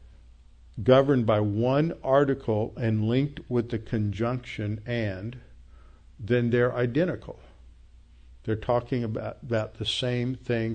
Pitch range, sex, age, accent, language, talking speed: 105-130 Hz, male, 60-79, American, English, 110 wpm